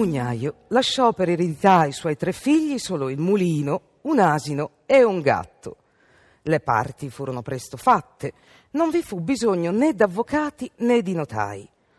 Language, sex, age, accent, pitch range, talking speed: Italian, female, 40-59, native, 140-225 Hz, 150 wpm